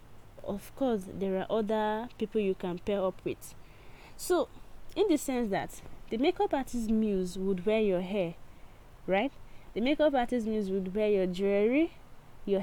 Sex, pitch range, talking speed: female, 195-260 Hz, 160 wpm